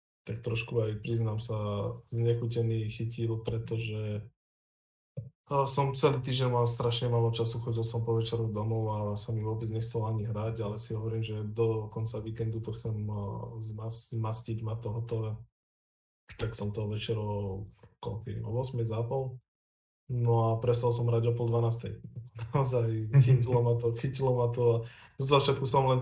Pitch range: 110-120 Hz